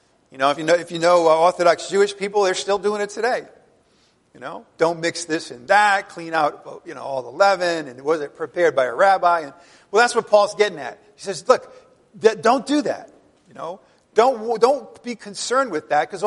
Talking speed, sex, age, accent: 215 wpm, male, 50-69, American